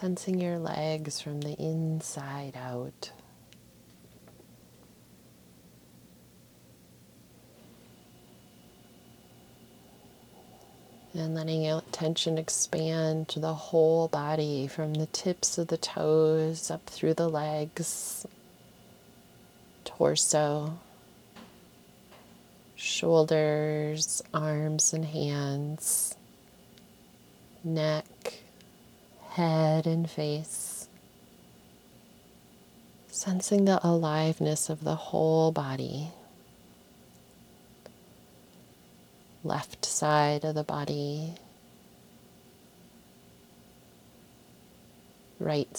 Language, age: English, 30-49